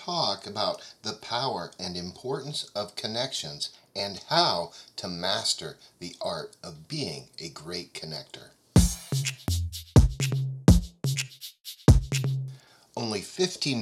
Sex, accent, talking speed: male, American, 90 wpm